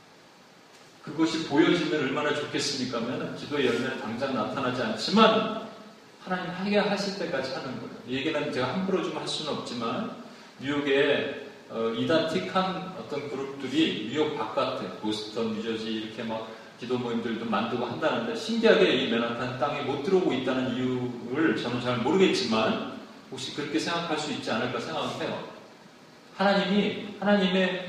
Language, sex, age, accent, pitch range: Korean, male, 40-59, native, 125-190 Hz